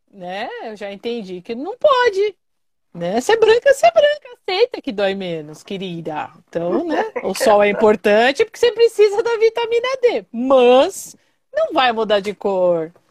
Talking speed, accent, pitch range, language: 170 wpm, Brazilian, 205-295 Hz, Portuguese